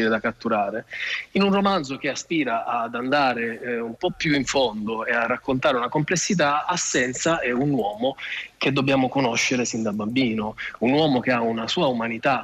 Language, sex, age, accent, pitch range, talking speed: Italian, male, 20-39, native, 110-135 Hz, 180 wpm